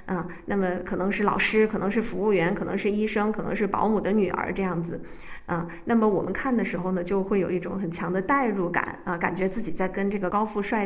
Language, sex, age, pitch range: Chinese, female, 20-39, 190-235 Hz